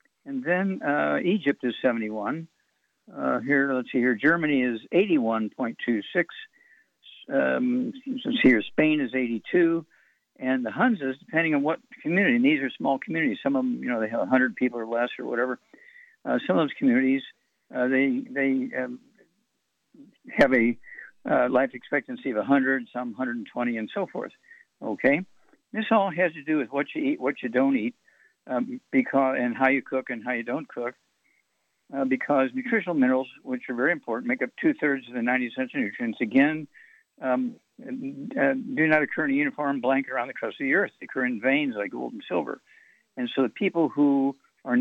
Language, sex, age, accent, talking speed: English, male, 60-79, American, 185 wpm